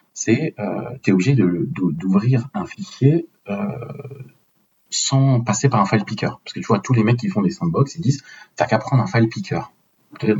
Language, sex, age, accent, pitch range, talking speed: French, male, 40-59, French, 110-155 Hz, 215 wpm